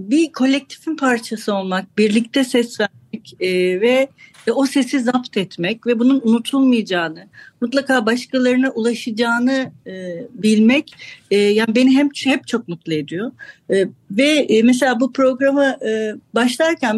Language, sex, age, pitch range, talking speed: Turkish, female, 60-79, 200-255 Hz, 110 wpm